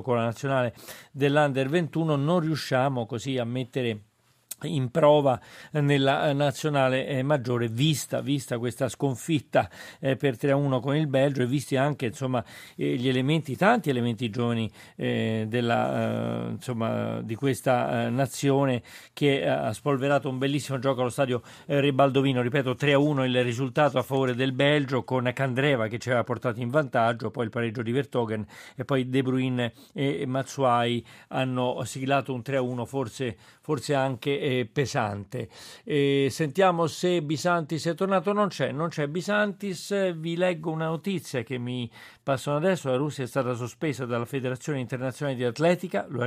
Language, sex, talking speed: Italian, male, 145 wpm